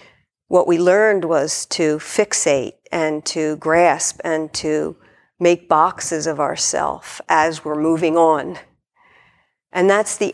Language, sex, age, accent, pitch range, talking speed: English, female, 50-69, American, 165-195 Hz, 130 wpm